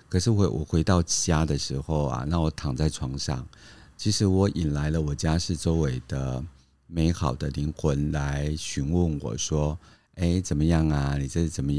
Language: Chinese